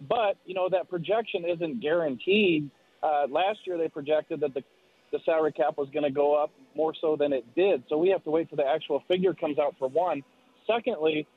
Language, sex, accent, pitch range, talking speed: English, male, American, 150-175 Hz, 215 wpm